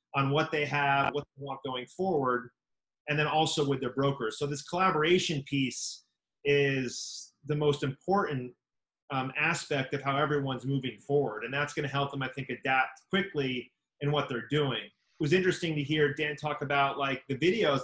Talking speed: 180 wpm